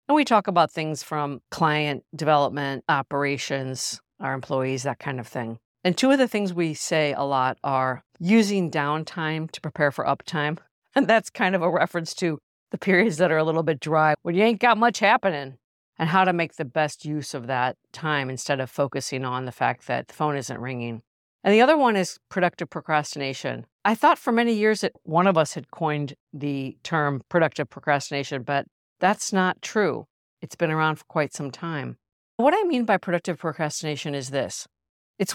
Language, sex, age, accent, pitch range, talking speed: English, female, 50-69, American, 140-180 Hz, 195 wpm